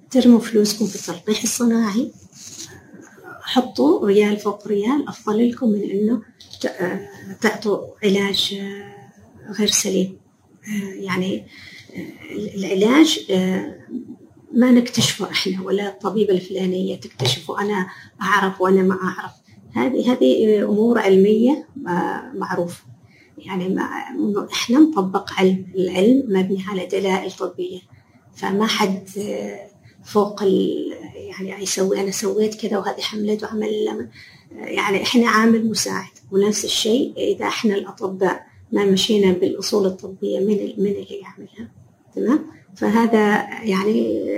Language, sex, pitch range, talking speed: Arabic, female, 195-235 Hz, 105 wpm